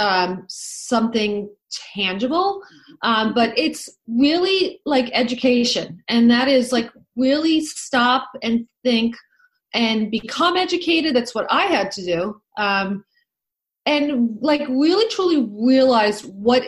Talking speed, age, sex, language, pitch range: 120 wpm, 30-49, female, English, 200-260 Hz